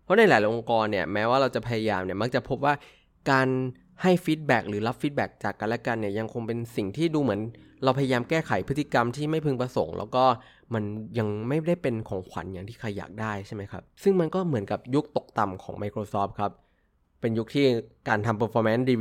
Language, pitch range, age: Thai, 100-130 Hz, 20-39